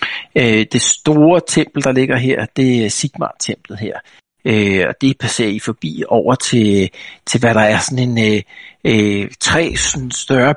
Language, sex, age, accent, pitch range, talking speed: Danish, male, 60-79, native, 110-140 Hz, 170 wpm